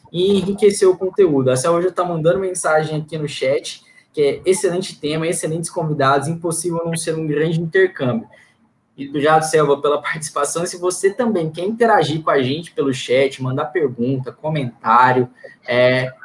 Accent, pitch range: Brazilian, 140-170 Hz